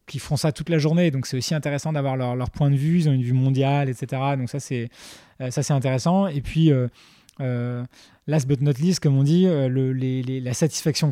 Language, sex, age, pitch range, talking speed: French, male, 20-39, 135-170 Hz, 235 wpm